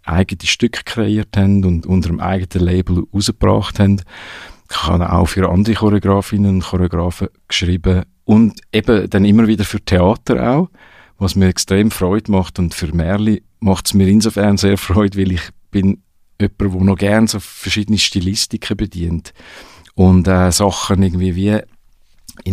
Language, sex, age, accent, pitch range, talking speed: German, male, 50-69, Austrian, 90-105 Hz, 155 wpm